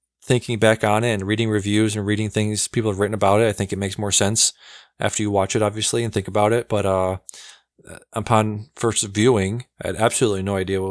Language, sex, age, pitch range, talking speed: English, male, 20-39, 95-115 Hz, 225 wpm